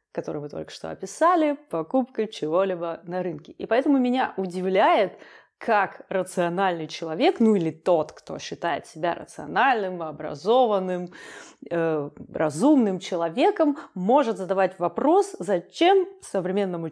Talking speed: 110 wpm